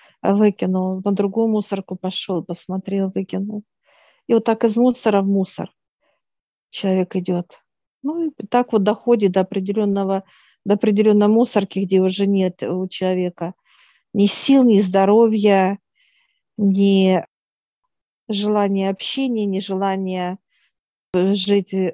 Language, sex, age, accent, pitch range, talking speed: Russian, female, 50-69, native, 190-215 Hz, 110 wpm